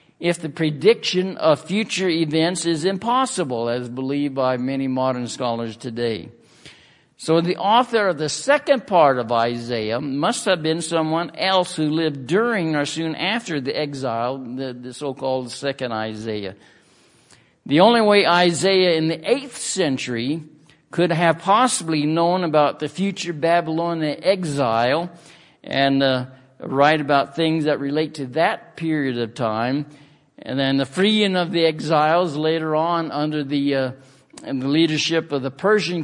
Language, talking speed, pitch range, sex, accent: English, 145 wpm, 140-175 Hz, male, American